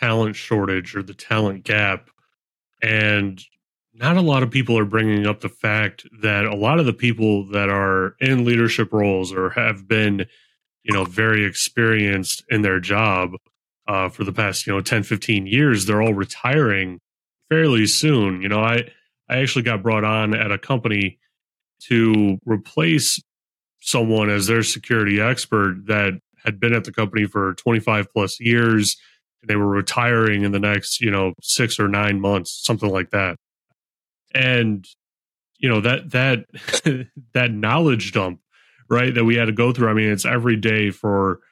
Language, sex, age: English, male, 30-49